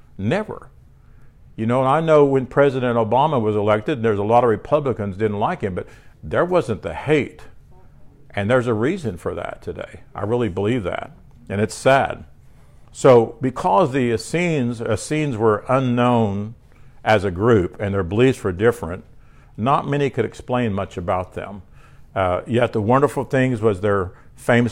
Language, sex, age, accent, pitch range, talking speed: English, male, 60-79, American, 110-125 Hz, 165 wpm